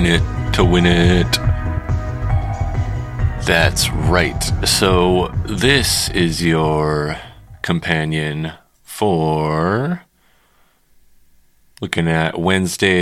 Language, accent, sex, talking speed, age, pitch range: English, American, male, 70 wpm, 30-49, 75-90 Hz